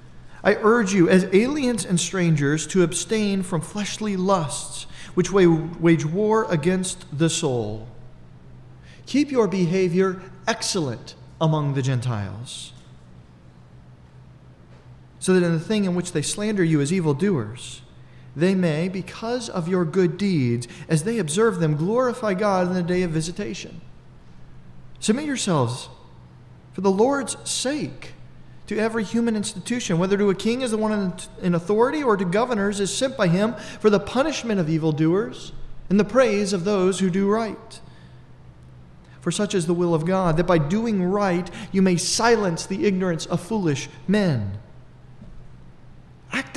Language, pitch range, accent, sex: English, 150-215 Hz, American, male